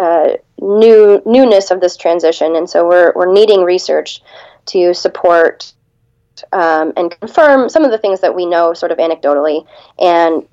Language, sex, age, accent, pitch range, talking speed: English, female, 20-39, American, 165-200 Hz, 160 wpm